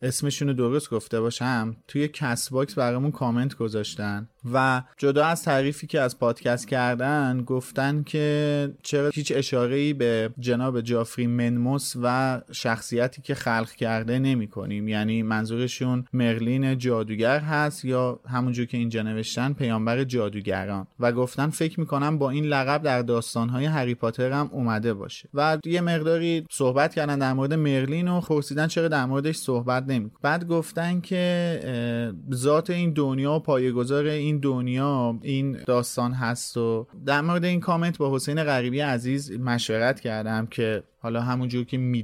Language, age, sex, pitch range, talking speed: Persian, 30-49, male, 120-145 Hz, 145 wpm